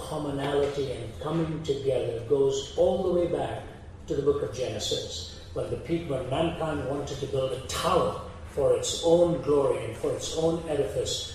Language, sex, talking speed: English, male, 175 wpm